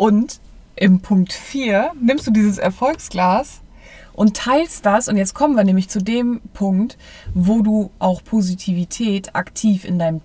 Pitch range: 185-225 Hz